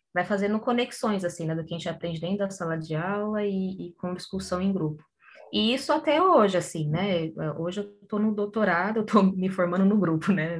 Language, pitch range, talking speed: Portuguese, 170-210 Hz, 215 wpm